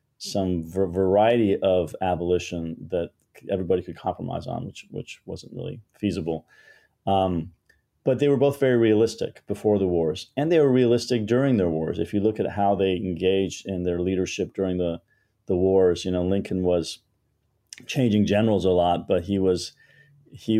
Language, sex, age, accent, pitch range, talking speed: English, male, 30-49, American, 90-105 Hz, 170 wpm